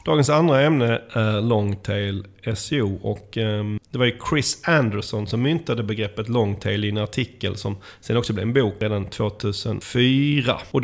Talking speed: 155 wpm